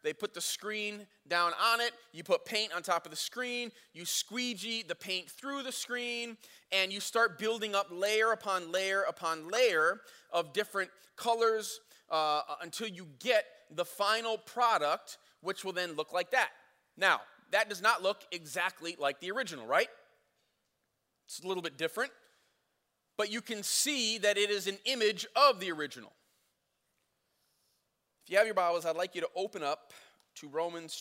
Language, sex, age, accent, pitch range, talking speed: English, male, 30-49, American, 160-215 Hz, 170 wpm